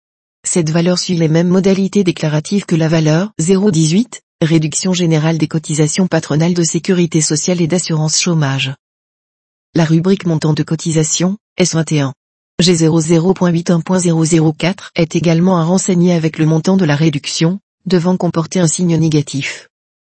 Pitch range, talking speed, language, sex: 155-180 Hz, 130 wpm, French, female